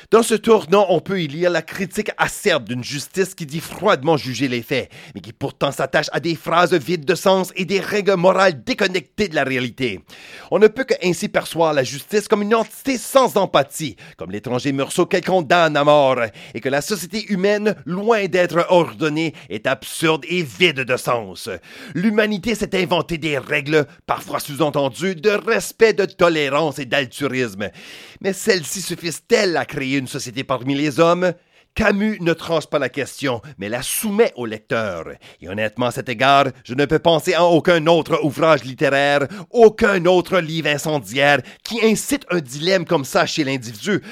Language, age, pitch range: English, 40-59, 145-195 Hz